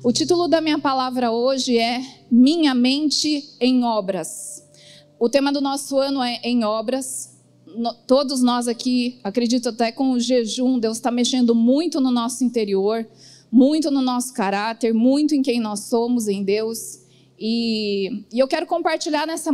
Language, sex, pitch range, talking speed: Portuguese, female, 225-265 Hz, 155 wpm